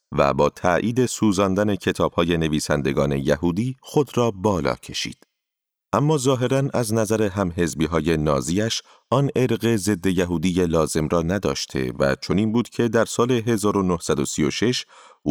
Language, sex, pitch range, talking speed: Persian, male, 90-115 Hz, 130 wpm